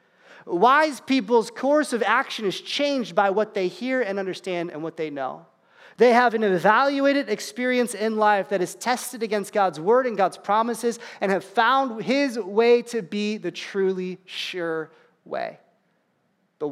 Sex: male